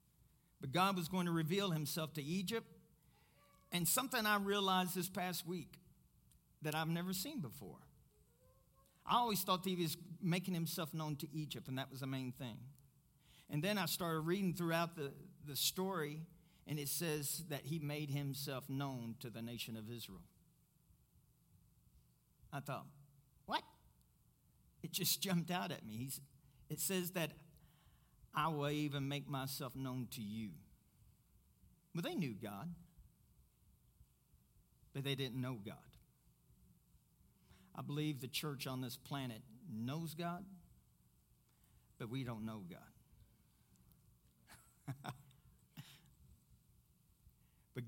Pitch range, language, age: 130-165 Hz, English, 50-69